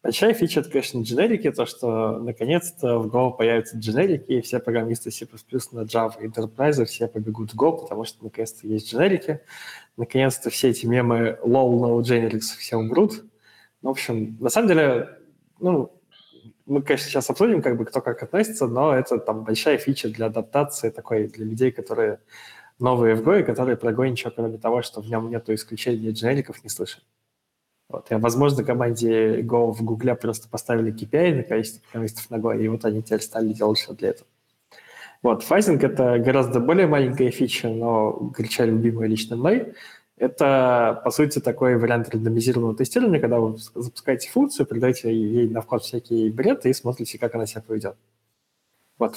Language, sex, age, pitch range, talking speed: Russian, male, 20-39, 115-130 Hz, 170 wpm